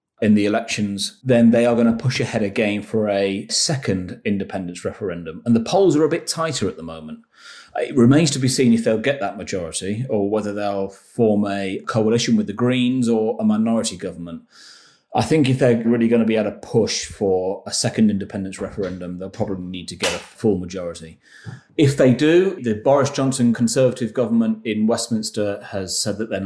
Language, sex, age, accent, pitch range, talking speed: English, male, 30-49, British, 100-120 Hz, 195 wpm